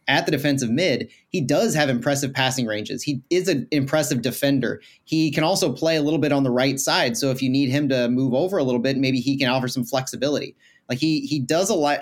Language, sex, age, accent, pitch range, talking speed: English, male, 30-49, American, 135-165 Hz, 245 wpm